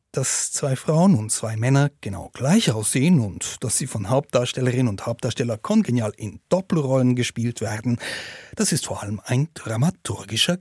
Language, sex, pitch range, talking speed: German, male, 110-155 Hz, 155 wpm